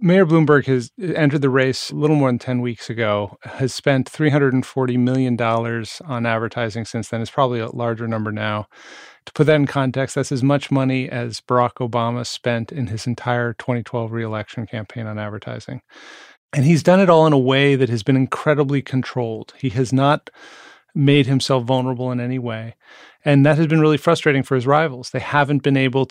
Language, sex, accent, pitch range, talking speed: English, male, American, 115-140 Hz, 190 wpm